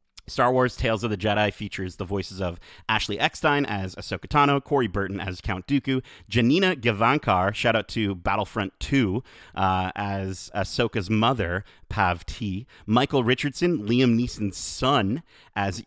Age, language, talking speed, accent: 30-49, English, 150 wpm, American